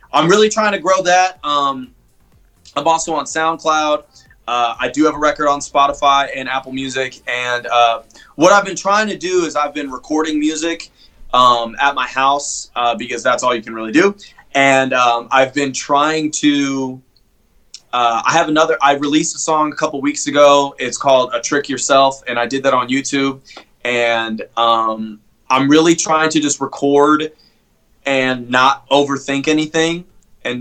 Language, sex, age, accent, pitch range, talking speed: English, male, 20-39, American, 125-145 Hz, 175 wpm